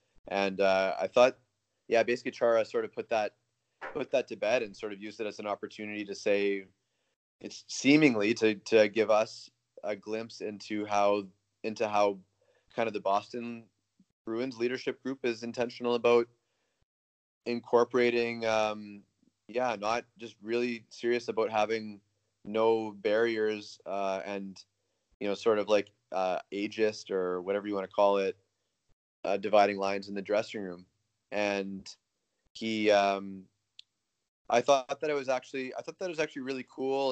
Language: English